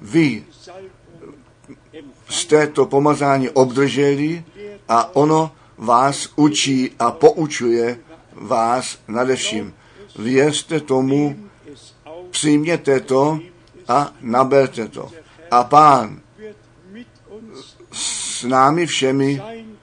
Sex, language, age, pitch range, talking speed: male, Czech, 50-69, 125-150 Hz, 80 wpm